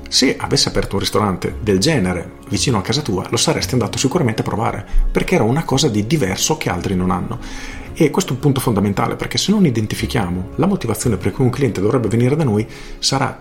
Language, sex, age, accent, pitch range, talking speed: Italian, male, 40-59, native, 95-135 Hz, 215 wpm